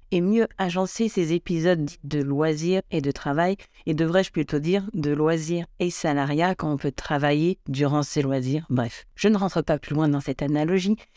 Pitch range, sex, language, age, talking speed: 150-195 Hz, female, French, 50-69, 190 wpm